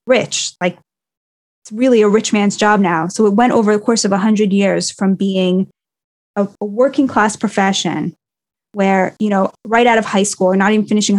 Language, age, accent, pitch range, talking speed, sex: English, 20-39, American, 190-230 Hz, 205 wpm, female